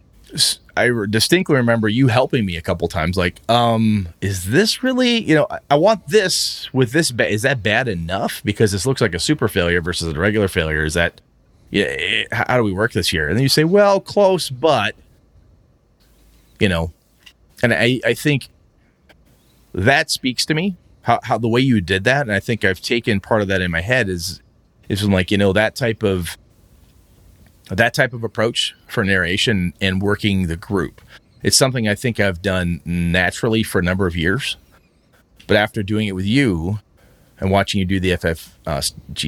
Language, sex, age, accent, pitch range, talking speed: English, male, 30-49, American, 90-120 Hz, 195 wpm